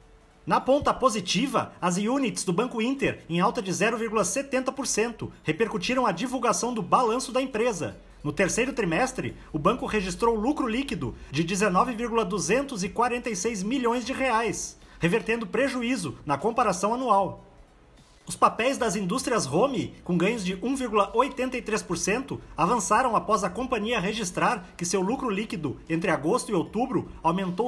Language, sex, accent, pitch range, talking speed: Portuguese, male, Brazilian, 190-245 Hz, 130 wpm